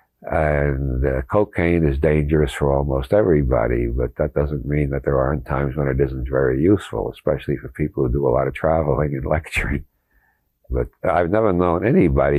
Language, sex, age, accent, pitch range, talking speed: English, male, 60-79, American, 65-80 Hz, 180 wpm